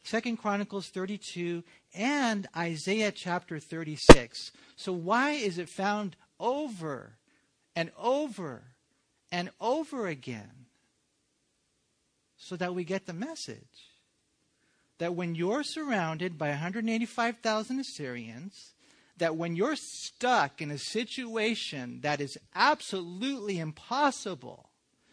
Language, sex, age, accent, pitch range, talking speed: English, male, 50-69, American, 150-225 Hz, 100 wpm